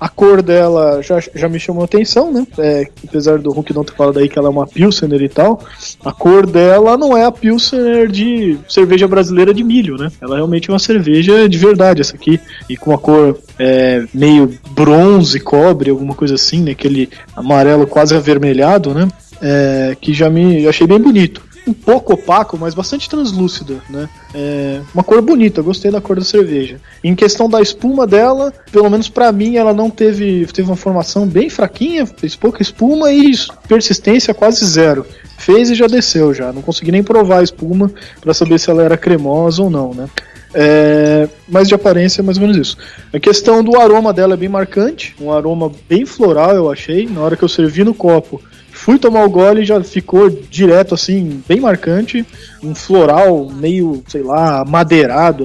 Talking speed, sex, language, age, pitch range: 185 wpm, male, Portuguese, 20-39, 150-205 Hz